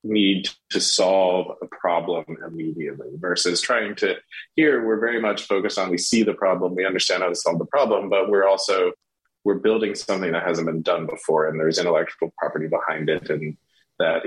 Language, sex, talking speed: English, male, 190 wpm